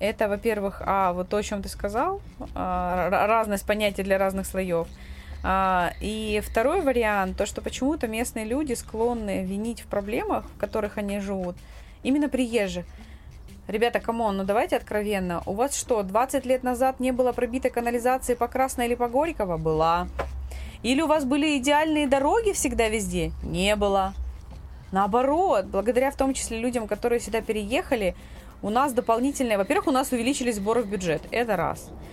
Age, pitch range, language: 20-39, 195-250 Hz, Russian